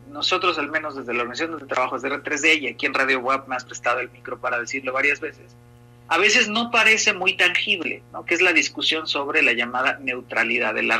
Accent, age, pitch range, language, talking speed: Mexican, 40-59, 120-195 Hz, Spanish, 230 wpm